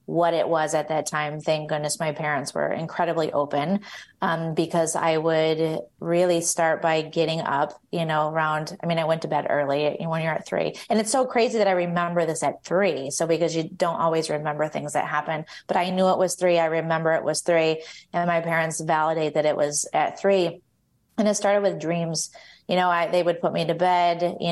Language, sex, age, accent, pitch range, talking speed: English, female, 30-49, American, 160-175 Hz, 220 wpm